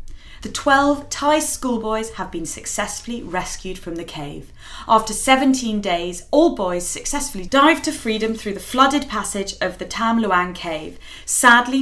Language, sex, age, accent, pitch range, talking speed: English, female, 20-39, British, 180-235 Hz, 150 wpm